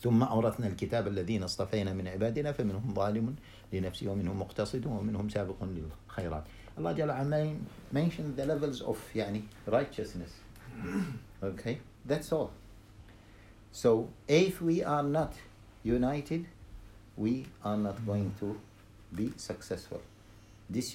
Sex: male